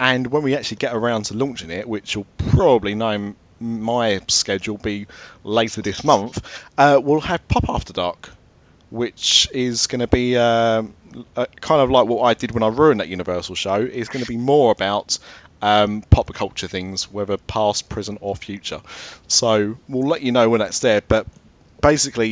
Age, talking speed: 30-49, 185 wpm